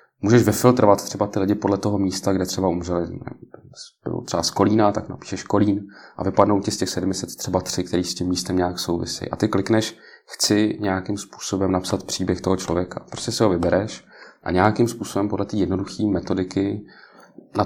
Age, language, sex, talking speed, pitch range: 30-49, Czech, male, 180 wpm, 90-100 Hz